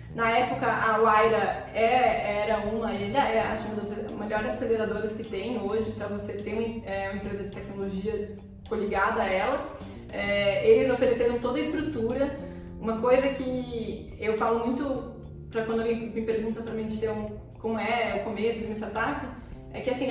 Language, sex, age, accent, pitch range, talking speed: Portuguese, female, 20-39, Brazilian, 215-265 Hz, 165 wpm